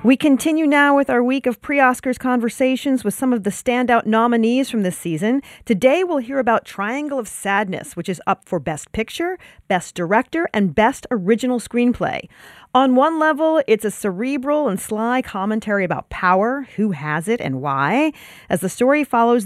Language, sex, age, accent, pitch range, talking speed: English, female, 40-59, American, 190-255 Hz, 175 wpm